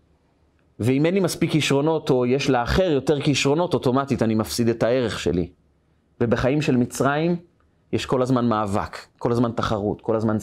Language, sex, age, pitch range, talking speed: Hebrew, male, 30-49, 115-180 Hz, 160 wpm